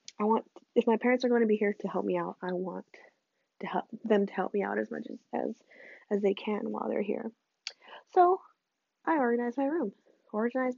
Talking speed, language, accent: 210 wpm, English, American